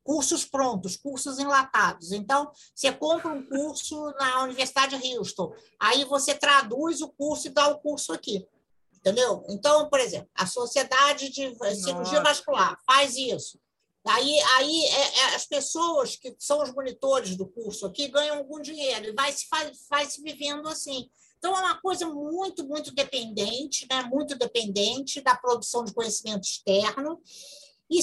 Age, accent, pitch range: 50-69, Brazilian, 240-305 Hz